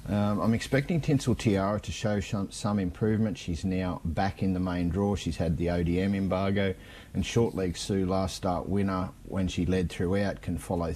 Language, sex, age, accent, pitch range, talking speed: English, male, 40-59, Australian, 90-105 Hz, 190 wpm